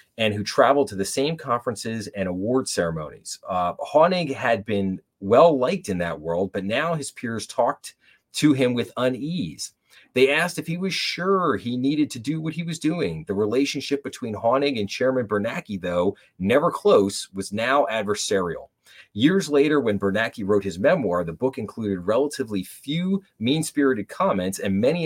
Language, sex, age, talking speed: English, male, 30-49, 170 wpm